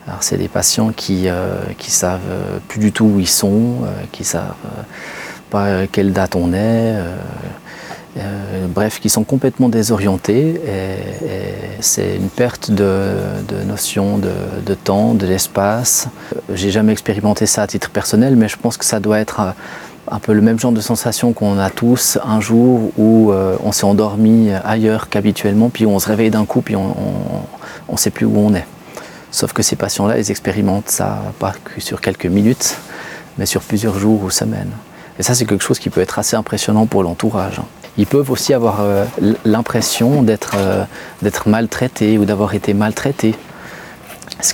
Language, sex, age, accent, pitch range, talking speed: French, male, 30-49, French, 100-115 Hz, 180 wpm